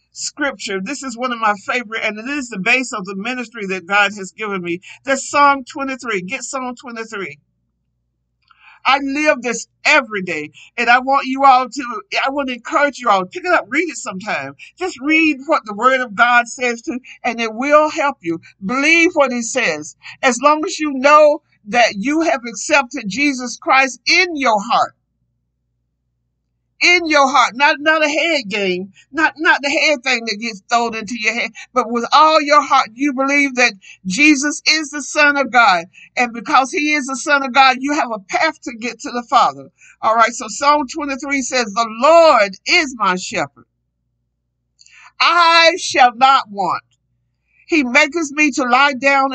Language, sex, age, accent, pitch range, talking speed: English, male, 50-69, American, 220-295 Hz, 185 wpm